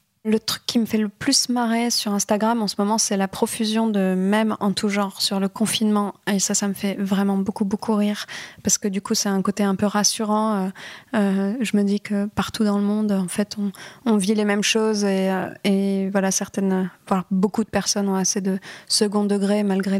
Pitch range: 195-210 Hz